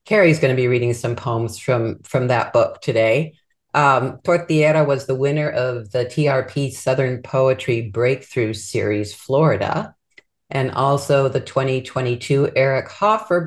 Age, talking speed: 50-69, 140 wpm